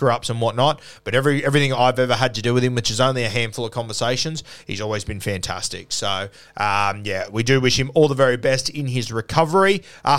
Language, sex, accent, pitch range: English, male, Australian, 115-145 Hz